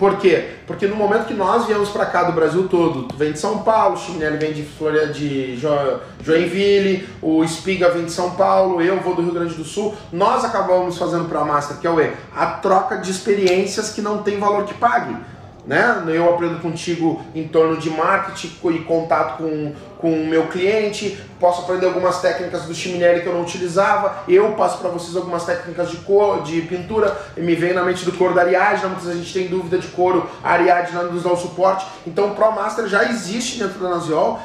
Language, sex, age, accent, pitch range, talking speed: Portuguese, male, 20-39, Brazilian, 170-205 Hz, 215 wpm